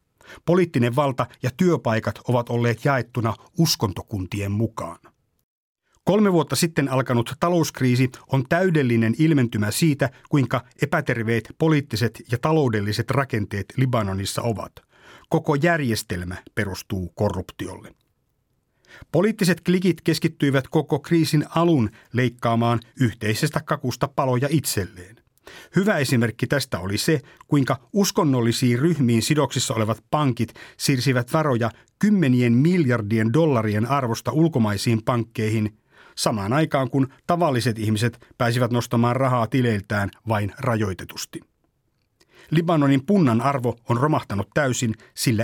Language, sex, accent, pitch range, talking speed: Finnish, male, native, 115-150 Hz, 105 wpm